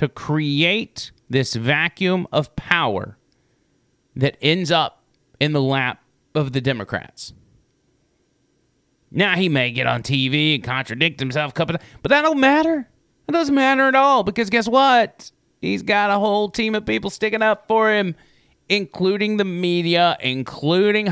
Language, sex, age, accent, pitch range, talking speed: English, male, 30-49, American, 140-210 Hz, 155 wpm